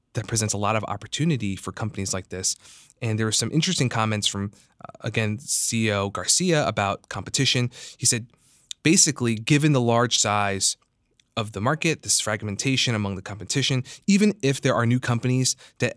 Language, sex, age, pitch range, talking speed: English, male, 20-39, 105-130 Hz, 165 wpm